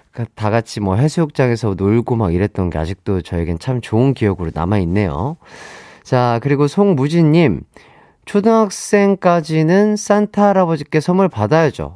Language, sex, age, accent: Korean, male, 30-49, native